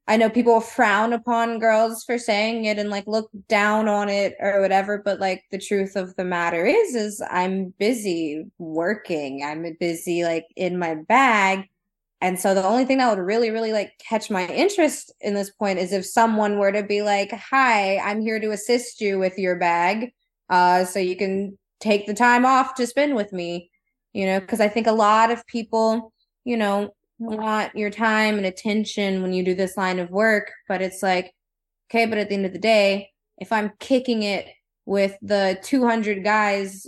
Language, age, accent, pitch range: English, 20-39, American, 185-225 Hz